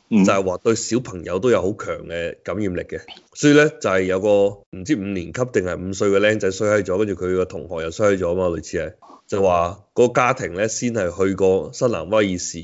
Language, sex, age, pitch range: Chinese, male, 20-39, 95-120 Hz